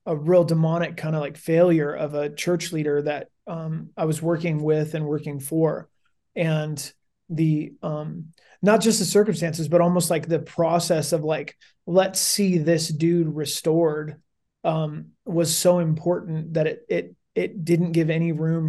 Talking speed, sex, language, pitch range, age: 165 wpm, male, English, 155-175 Hz, 30-49